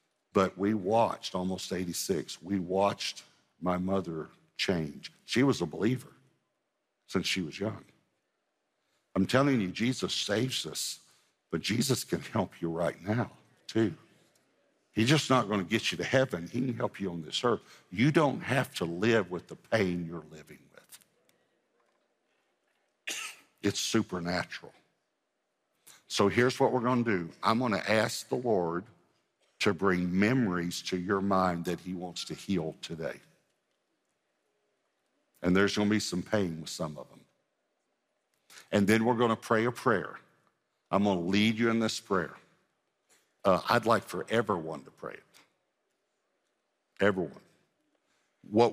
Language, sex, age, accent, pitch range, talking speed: English, male, 60-79, American, 90-115 Hz, 150 wpm